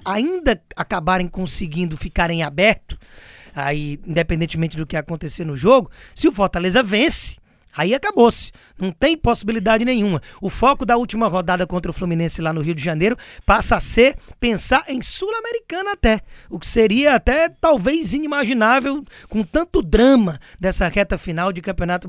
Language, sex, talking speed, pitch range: Portuguese, male, 150 wpm, 170-230 Hz